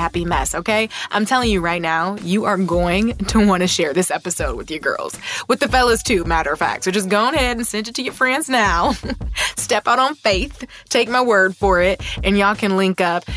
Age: 20-39